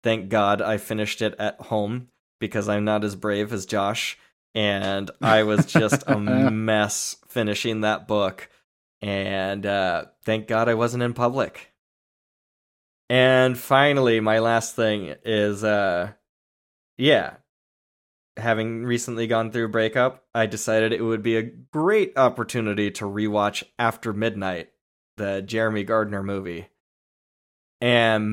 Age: 20-39